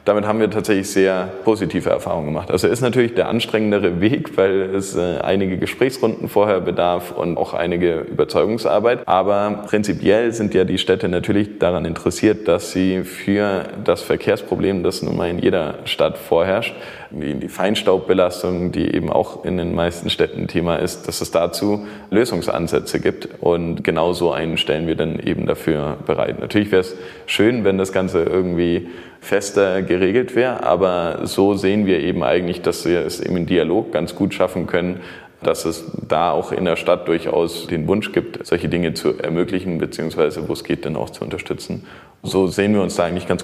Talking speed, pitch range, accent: 180 wpm, 90-105 Hz, German